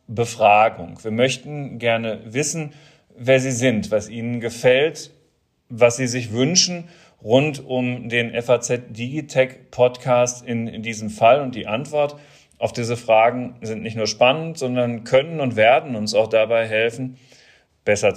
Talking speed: 145 wpm